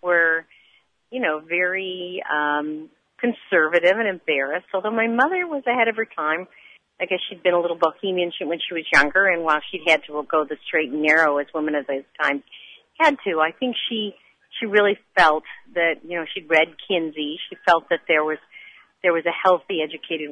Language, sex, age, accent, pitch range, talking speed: English, female, 50-69, American, 155-190 Hz, 195 wpm